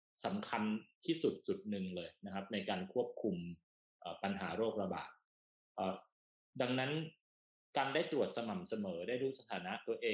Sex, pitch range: male, 100-135 Hz